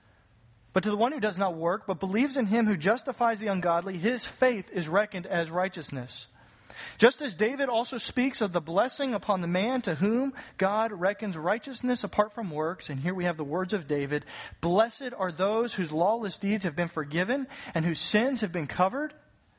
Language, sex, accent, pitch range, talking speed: English, male, American, 165-225 Hz, 195 wpm